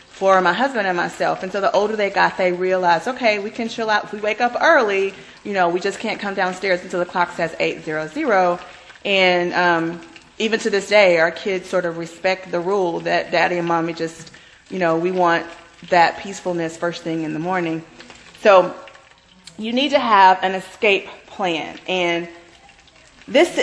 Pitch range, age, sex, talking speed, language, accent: 170-205 Hz, 30-49, female, 195 wpm, English, American